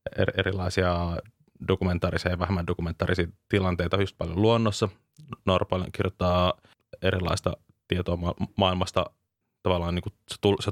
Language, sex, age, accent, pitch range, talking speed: Finnish, male, 20-39, native, 90-100 Hz, 105 wpm